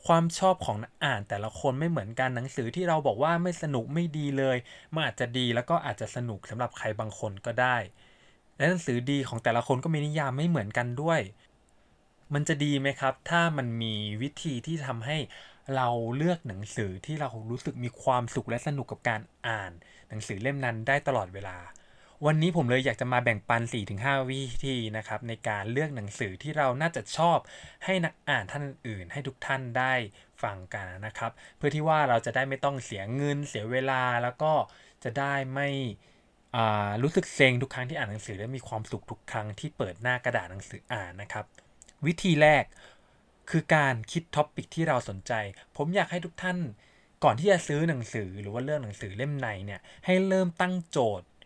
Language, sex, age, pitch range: English, male, 20-39, 110-150 Hz